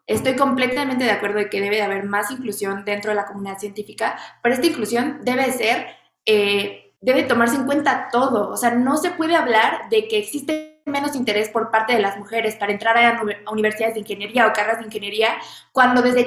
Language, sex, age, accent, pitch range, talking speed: Spanish, female, 20-39, Mexican, 210-260 Hz, 205 wpm